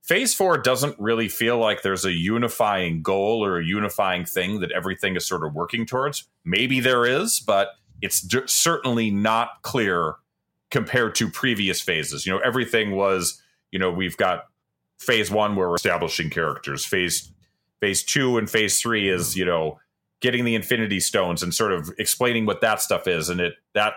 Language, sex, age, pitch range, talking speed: English, male, 30-49, 95-125 Hz, 180 wpm